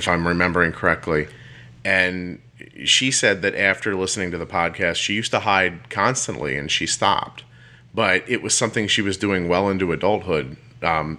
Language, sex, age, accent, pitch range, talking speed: English, male, 30-49, American, 85-115 Hz, 170 wpm